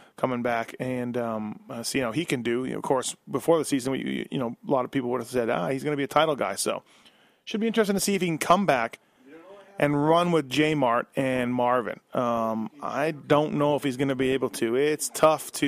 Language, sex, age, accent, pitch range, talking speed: English, male, 30-49, American, 130-165 Hz, 240 wpm